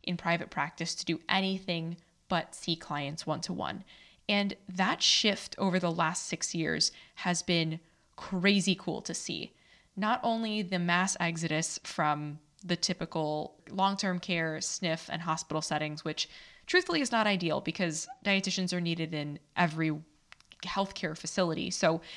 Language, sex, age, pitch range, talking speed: English, female, 20-39, 165-200 Hz, 140 wpm